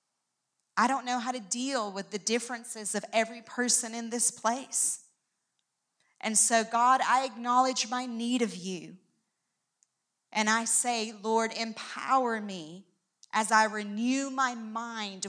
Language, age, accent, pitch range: English, 40-59, American, 210-255 Hz